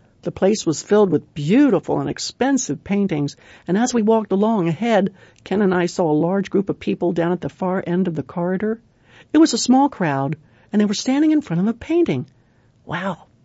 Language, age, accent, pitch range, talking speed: English, 60-79, American, 155-235 Hz, 210 wpm